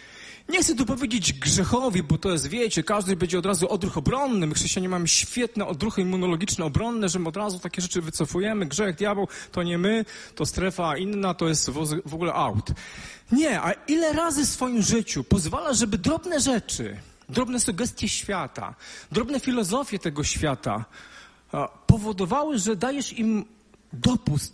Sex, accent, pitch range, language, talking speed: male, native, 180-235 Hz, Polish, 160 wpm